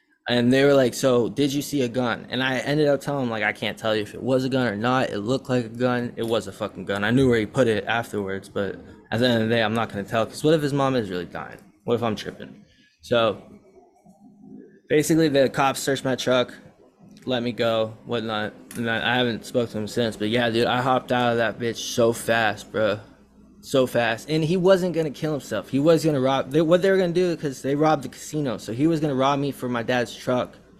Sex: male